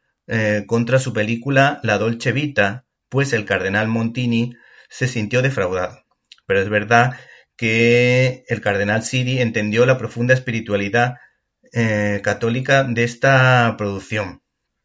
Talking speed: 120 wpm